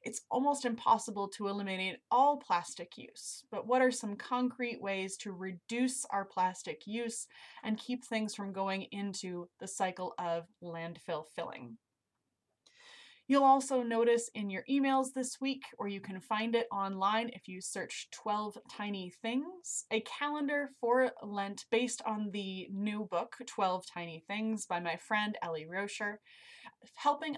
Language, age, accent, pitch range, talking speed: English, 20-39, American, 195-245 Hz, 150 wpm